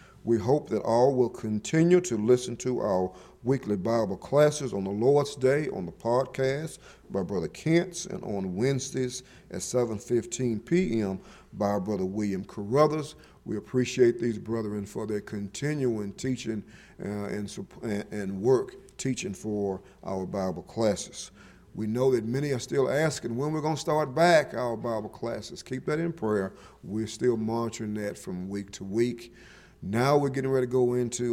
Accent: American